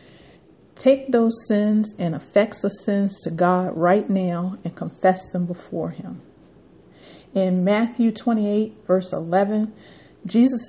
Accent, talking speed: American, 125 wpm